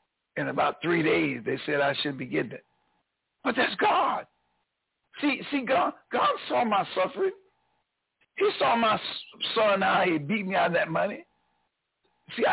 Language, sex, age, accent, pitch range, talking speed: English, male, 60-79, American, 165-220 Hz, 165 wpm